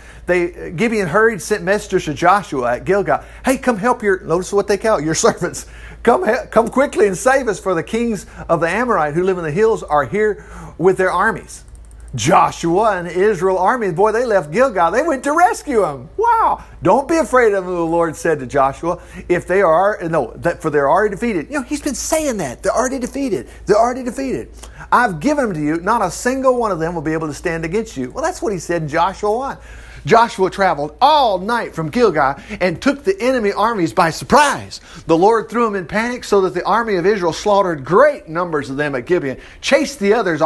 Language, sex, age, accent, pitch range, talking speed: English, male, 40-59, American, 165-245 Hz, 220 wpm